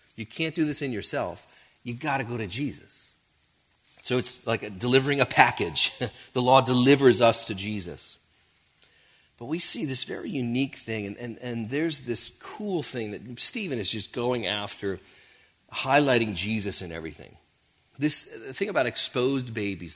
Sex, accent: male, American